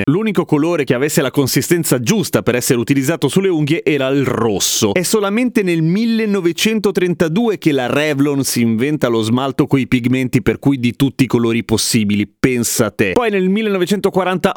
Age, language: 30-49, Italian